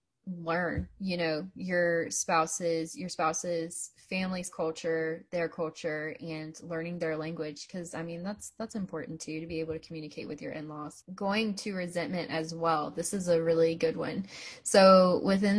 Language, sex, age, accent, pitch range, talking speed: English, female, 10-29, American, 160-185 Hz, 165 wpm